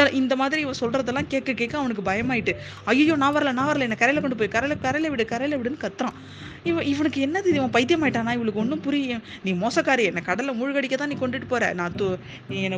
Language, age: Tamil, 20-39